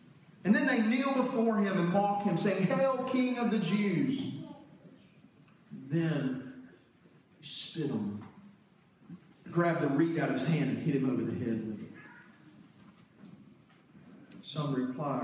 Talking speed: 135 wpm